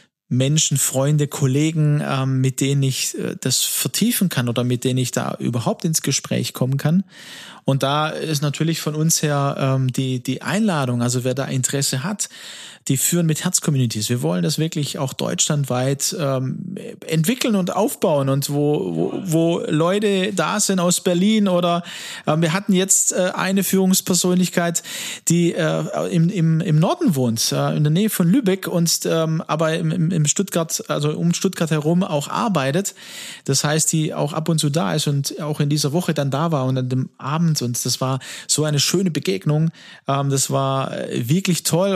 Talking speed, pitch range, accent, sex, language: 180 wpm, 140-185 Hz, German, male, German